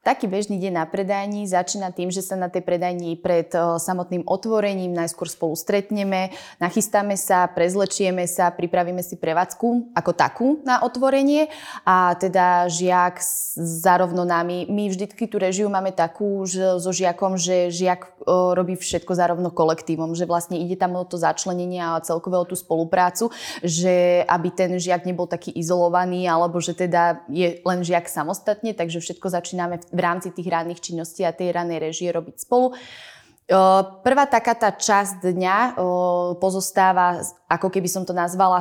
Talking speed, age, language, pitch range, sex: 155 wpm, 20-39, Slovak, 175-195 Hz, female